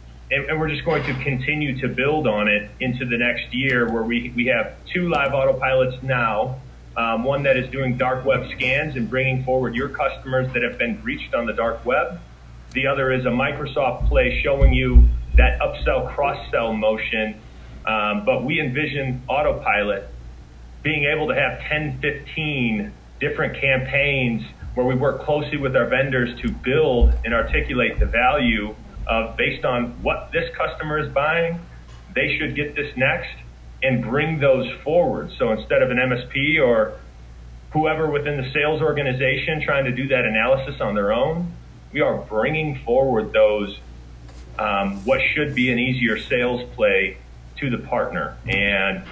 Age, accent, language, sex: 30-49, American, English, male